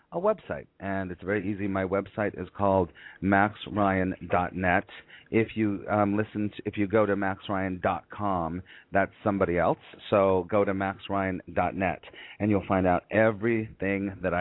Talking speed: 140 wpm